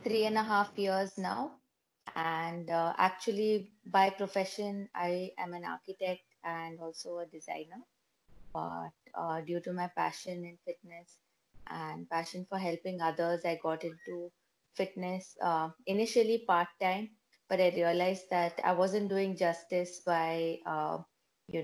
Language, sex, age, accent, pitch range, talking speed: Hindi, female, 20-39, native, 170-190 Hz, 140 wpm